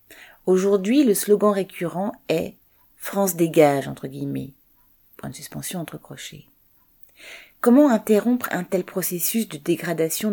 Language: French